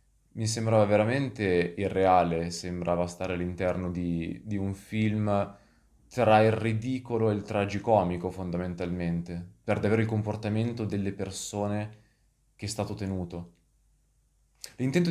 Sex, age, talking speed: male, 20-39, 115 wpm